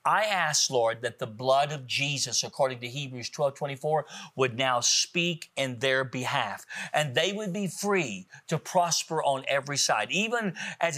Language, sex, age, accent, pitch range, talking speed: English, male, 50-69, American, 130-180 Hz, 170 wpm